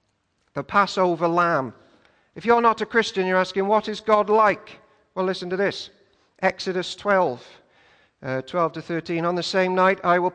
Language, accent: English, British